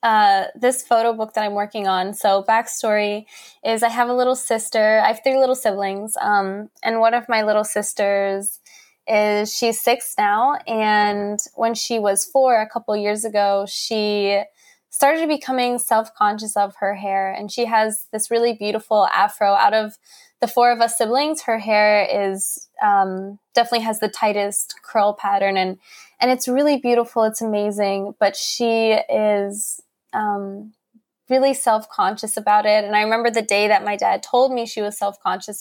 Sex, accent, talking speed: female, American, 170 wpm